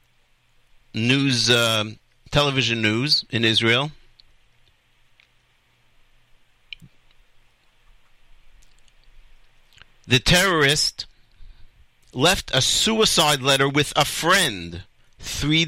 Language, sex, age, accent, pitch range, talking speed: English, male, 50-69, American, 110-140 Hz, 60 wpm